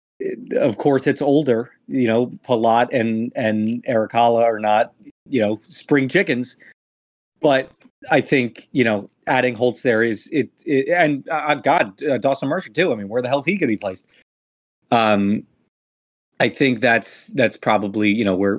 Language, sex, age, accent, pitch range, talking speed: English, male, 30-49, American, 110-150 Hz, 165 wpm